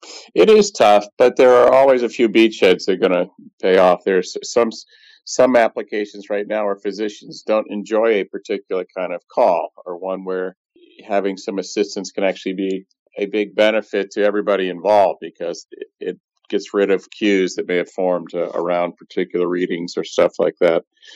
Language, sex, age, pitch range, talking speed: English, male, 50-69, 100-135 Hz, 185 wpm